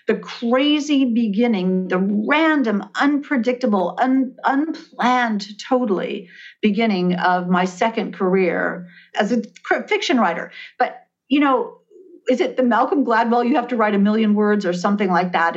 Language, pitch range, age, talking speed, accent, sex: English, 180-245 Hz, 50-69, 140 wpm, American, female